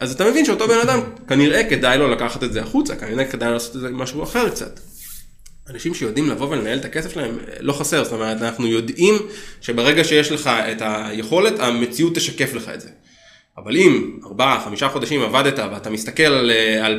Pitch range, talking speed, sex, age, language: 115-160 Hz, 190 wpm, male, 20-39, Hebrew